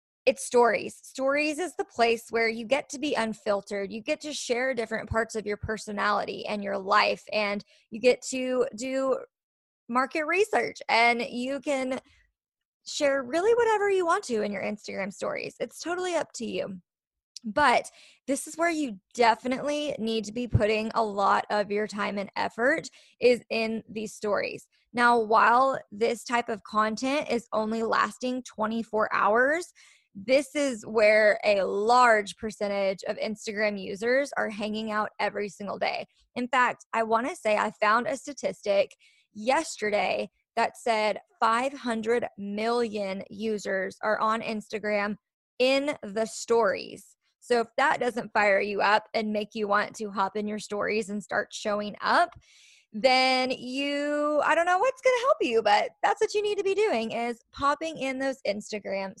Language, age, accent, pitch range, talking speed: English, 20-39, American, 210-275 Hz, 165 wpm